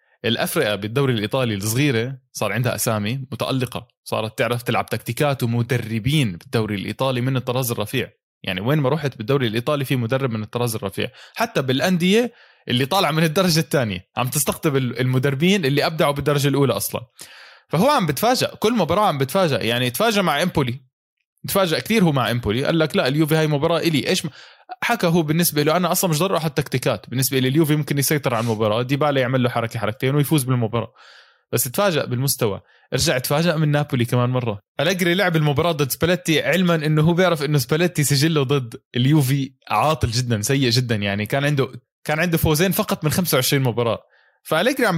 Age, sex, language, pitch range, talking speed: 20-39, male, Arabic, 125-165 Hz, 175 wpm